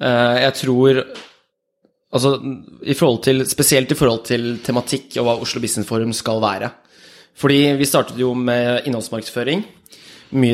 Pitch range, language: 115-130 Hz, English